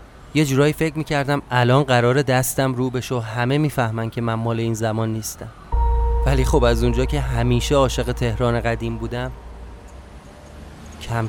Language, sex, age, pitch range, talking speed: Persian, male, 30-49, 105-135 Hz, 155 wpm